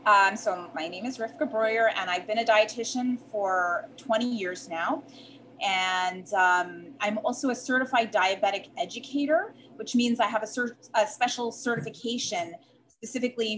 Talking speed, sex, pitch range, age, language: 150 wpm, female, 200-260 Hz, 30-49, English